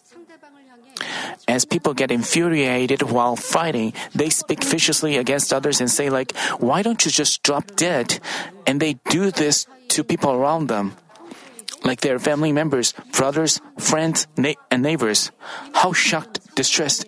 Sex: male